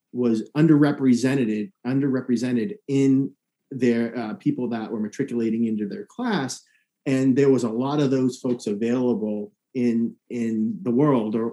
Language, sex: English, male